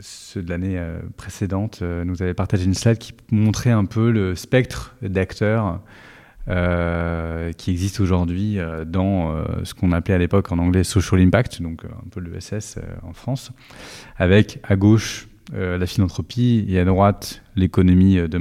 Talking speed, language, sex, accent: 160 wpm, French, male, French